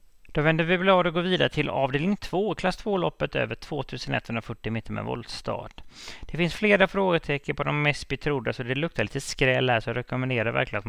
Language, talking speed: English, 205 wpm